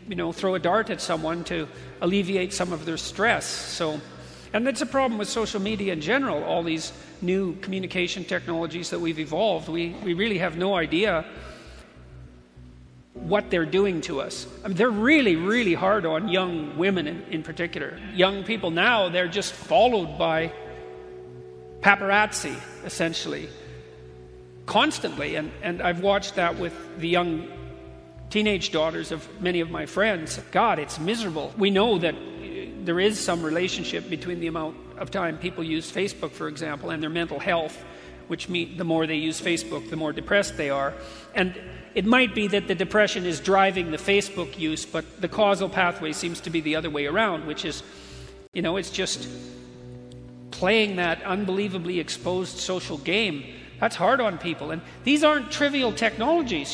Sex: male